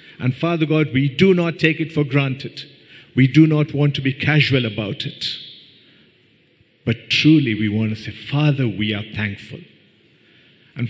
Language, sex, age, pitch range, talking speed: English, male, 50-69, 125-160 Hz, 165 wpm